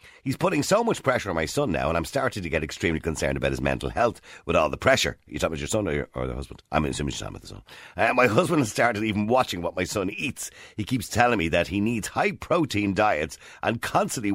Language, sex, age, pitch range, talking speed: English, male, 50-69, 85-125 Hz, 270 wpm